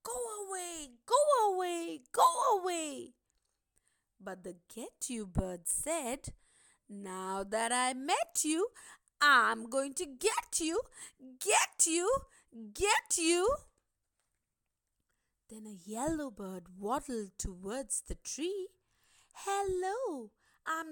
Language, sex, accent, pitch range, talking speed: English, female, Indian, 240-370 Hz, 105 wpm